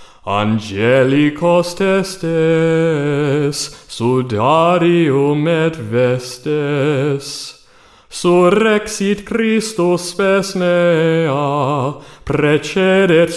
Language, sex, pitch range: English, male, 145-200 Hz